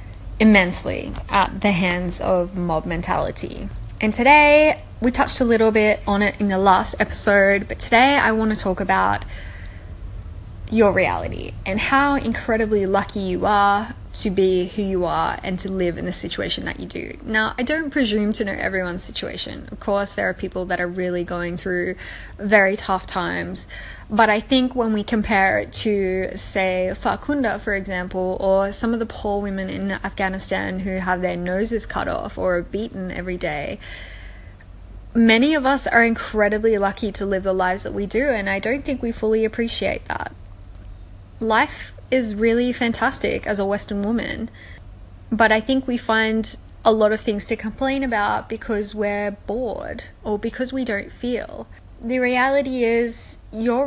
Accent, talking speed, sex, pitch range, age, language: Australian, 170 wpm, female, 180-225 Hz, 10-29, English